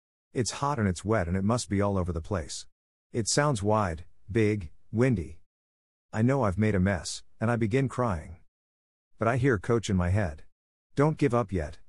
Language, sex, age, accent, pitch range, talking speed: English, male, 50-69, American, 80-115 Hz, 195 wpm